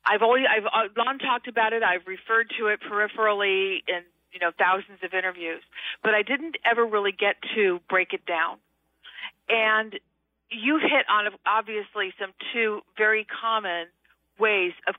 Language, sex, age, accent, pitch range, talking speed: English, female, 50-69, American, 185-235 Hz, 155 wpm